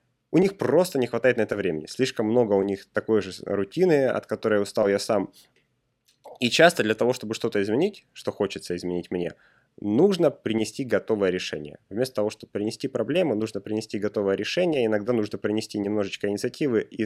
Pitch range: 105-135 Hz